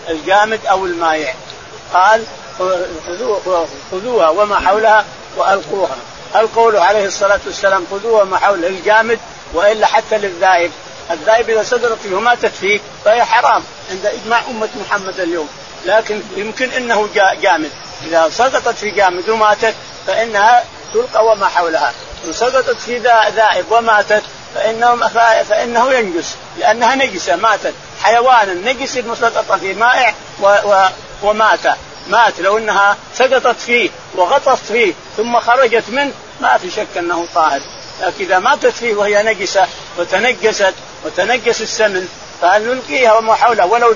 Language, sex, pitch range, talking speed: Arabic, male, 185-230 Hz, 125 wpm